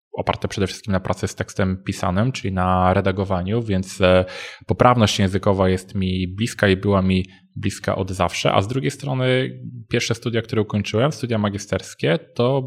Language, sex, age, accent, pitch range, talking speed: Polish, male, 20-39, native, 95-115 Hz, 160 wpm